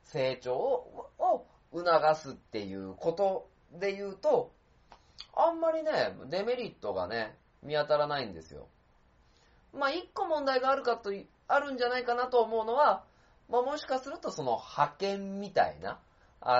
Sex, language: male, Japanese